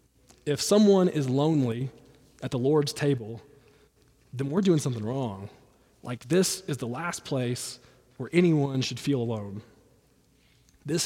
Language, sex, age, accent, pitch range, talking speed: English, male, 20-39, American, 125-150 Hz, 135 wpm